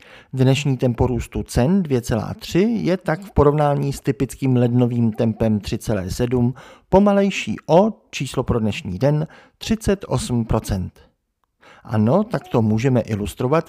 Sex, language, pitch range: male, Czech, 115-150 Hz